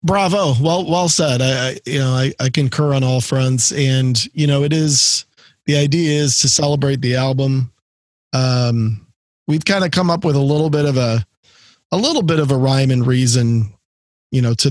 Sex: male